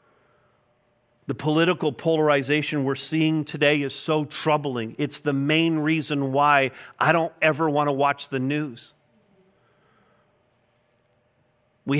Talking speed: 115 wpm